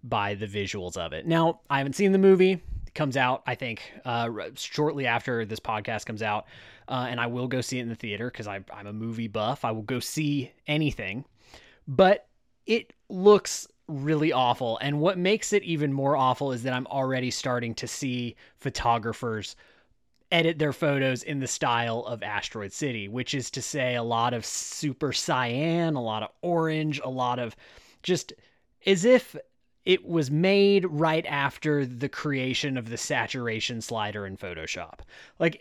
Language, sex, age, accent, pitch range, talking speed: English, male, 20-39, American, 115-155 Hz, 180 wpm